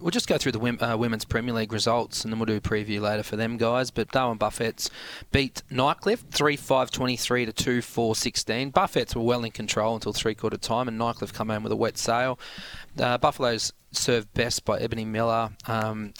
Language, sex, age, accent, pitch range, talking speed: English, male, 20-39, Australian, 110-125 Hz, 195 wpm